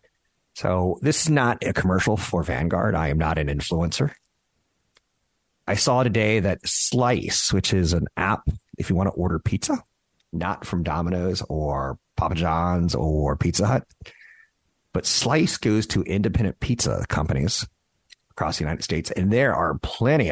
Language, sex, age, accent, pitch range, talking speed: English, male, 50-69, American, 85-110 Hz, 155 wpm